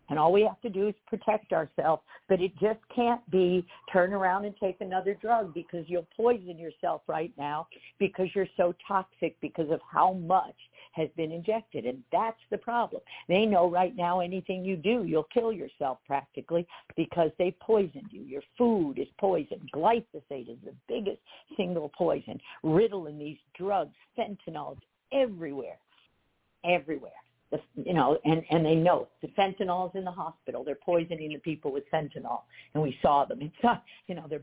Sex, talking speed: female, 175 wpm